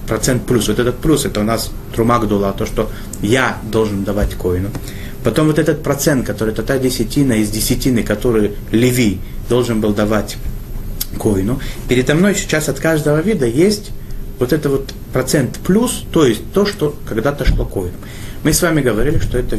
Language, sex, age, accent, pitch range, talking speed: Russian, male, 30-49, native, 100-130 Hz, 170 wpm